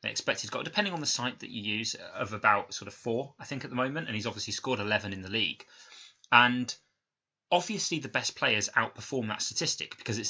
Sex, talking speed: male, 215 wpm